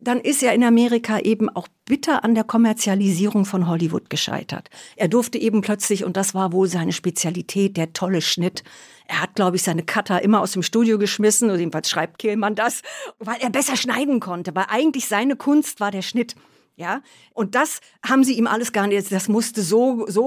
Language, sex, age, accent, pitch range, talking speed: German, female, 50-69, German, 195-245 Hz, 200 wpm